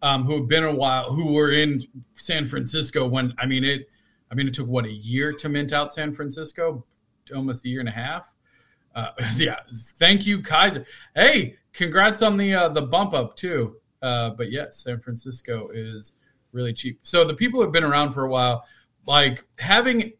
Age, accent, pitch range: 40-59, American, 130-170 Hz